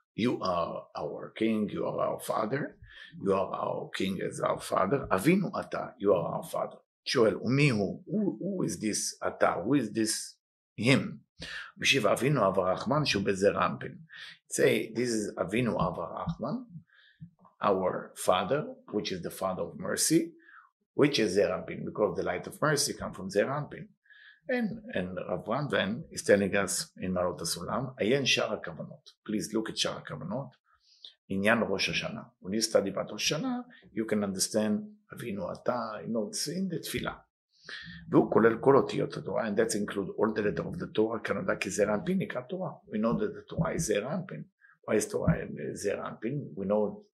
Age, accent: 50-69, Italian